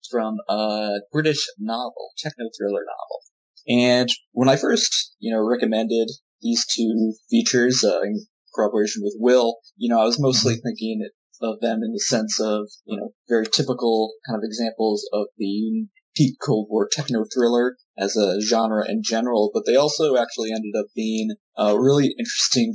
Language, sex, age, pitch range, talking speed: English, male, 20-39, 110-135 Hz, 160 wpm